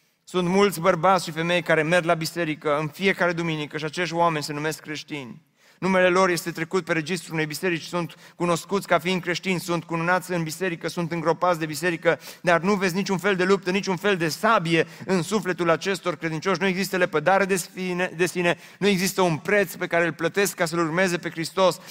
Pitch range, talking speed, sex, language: 155-190 Hz, 200 wpm, male, Romanian